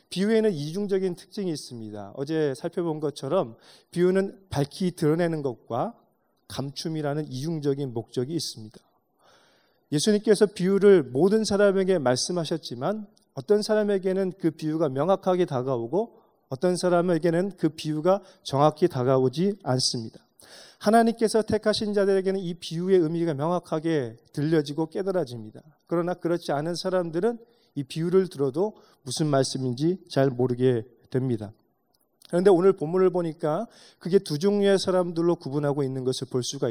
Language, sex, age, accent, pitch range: Korean, male, 30-49, native, 135-185 Hz